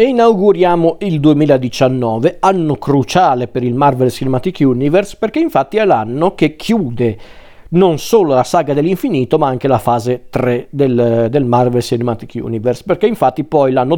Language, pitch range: Italian, 125-150 Hz